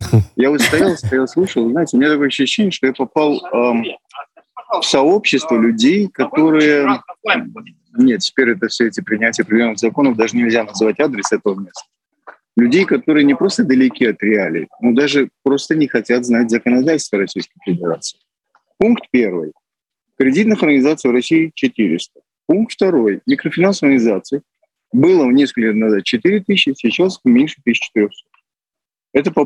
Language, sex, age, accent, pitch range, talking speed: Russian, male, 30-49, native, 125-205 Hz, 140 wpm